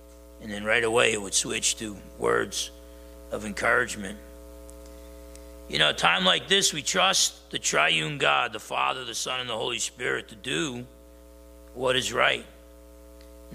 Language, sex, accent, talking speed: English, male, American, 160 wpm